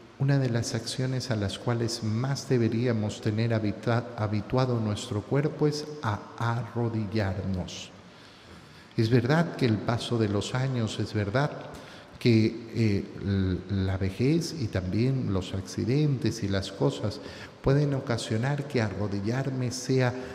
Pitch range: 110-150 Hz